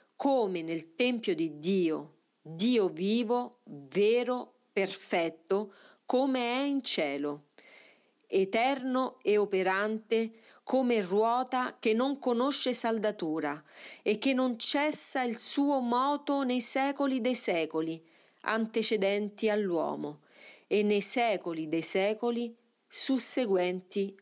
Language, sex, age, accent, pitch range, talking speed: Italian, female, 40-59, native, 180-240 Hz, 100 wpm